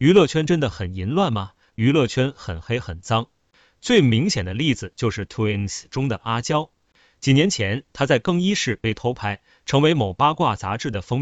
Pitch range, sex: 105-140 Hz, male